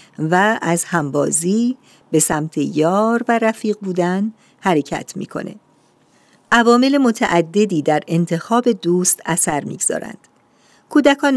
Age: 50-69